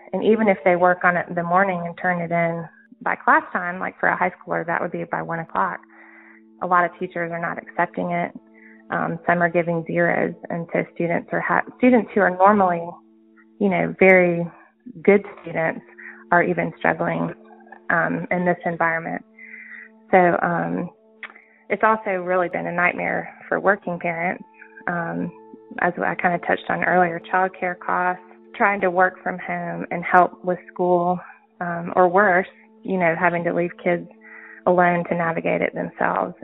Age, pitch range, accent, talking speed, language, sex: 20-39, 170-190 Hz, American, 175 wpm, English, female